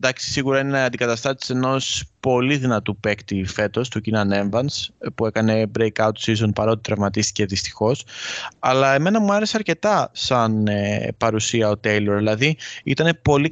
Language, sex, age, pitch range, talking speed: Greek, male, 20-39, 105-130 Hz, 140 wpm